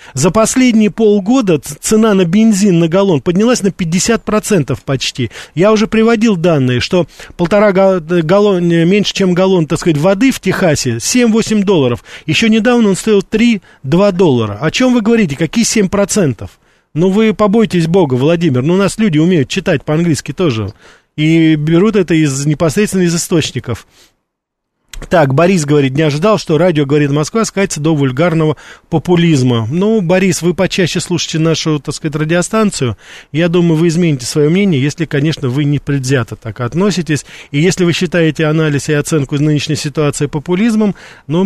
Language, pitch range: Russian, 145-190 Hz